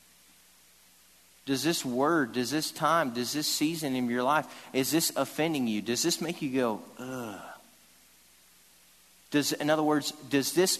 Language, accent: English, American